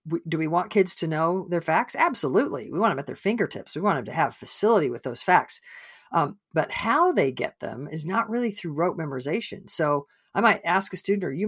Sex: female